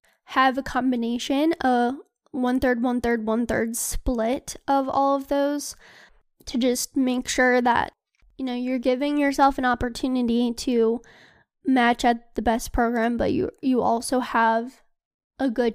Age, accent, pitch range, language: 10-29, American, 235-265 Hz, English